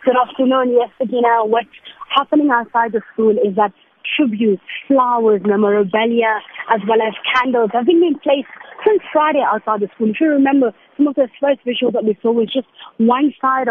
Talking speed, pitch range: 190 wpm, 215-275 Hz